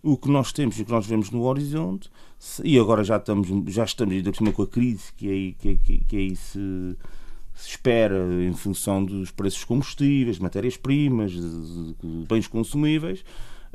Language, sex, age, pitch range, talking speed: Portuguese, male, 30-49, 100-140 Hz, 170 wpm